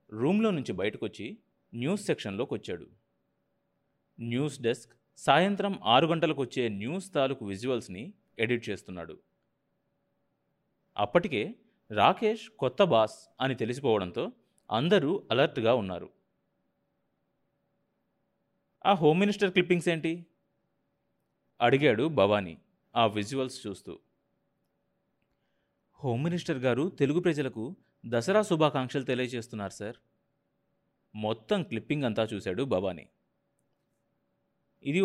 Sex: male